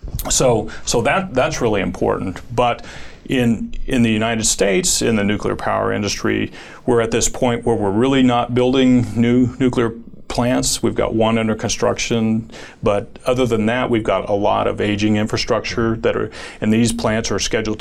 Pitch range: 100-120 Hz